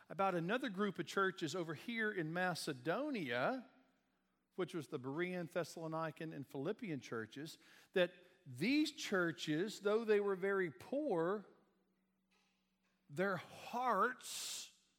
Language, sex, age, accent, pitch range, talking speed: English, male, 50-69, American, 165-215 Hz, 110 wpm